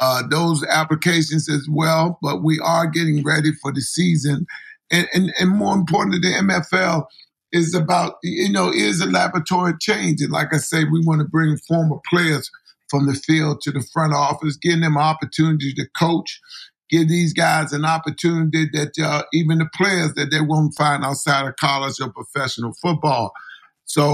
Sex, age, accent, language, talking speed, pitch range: male, 50-69, American, English, 175 wpm, 150-170 Hz